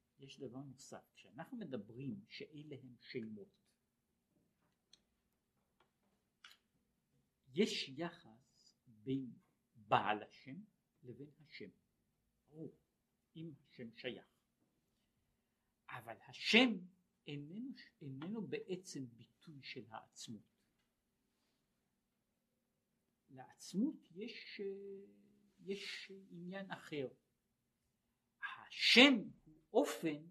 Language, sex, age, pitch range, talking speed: Hebrew, male, 60-79, 140-205 Hz, 65 wpm